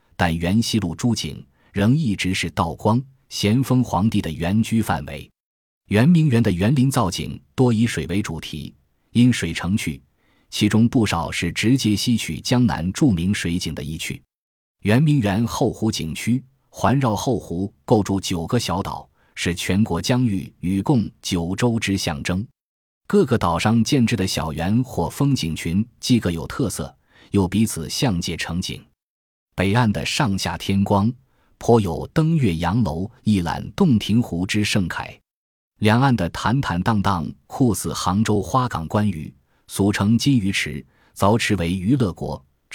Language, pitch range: Chinese, 85-120 Hz